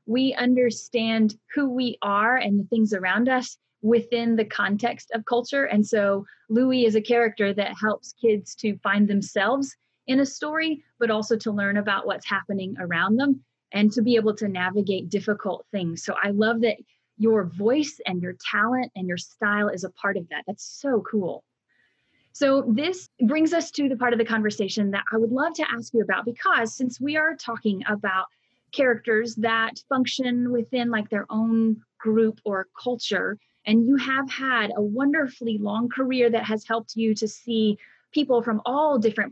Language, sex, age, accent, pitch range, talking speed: English, female, 30-49, American, 210-250 Hz, 180 wpm